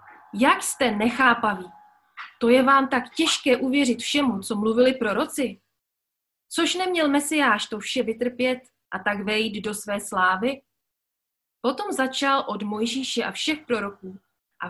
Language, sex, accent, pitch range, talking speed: Czech, female, native, 195-255 Hz, 135 wpm